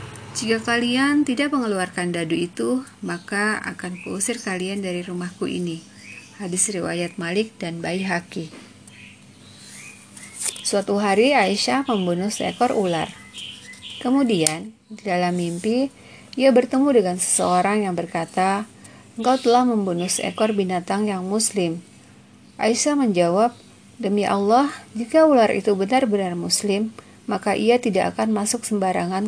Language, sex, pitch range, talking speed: Indonesian, female, 180-225 Hz, 115 wpm